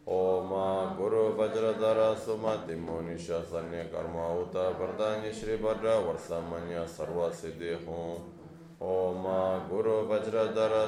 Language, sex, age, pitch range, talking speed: Italian, male, 20-39, 85-110 Hz, 110 wpm